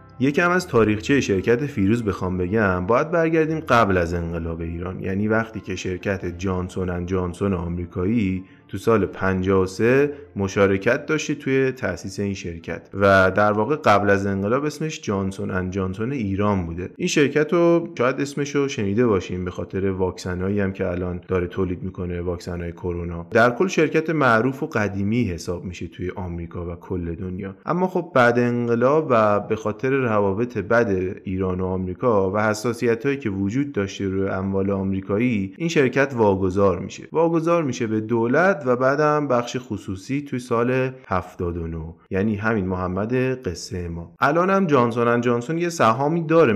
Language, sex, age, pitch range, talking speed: Persian, male, 30-49, 95-130 Hz, 155 wpm